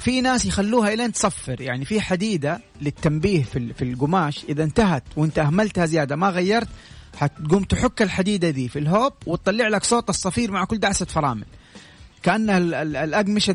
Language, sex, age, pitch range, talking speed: Arabic, male, 30-49, 140-200 Hz, 155 wpm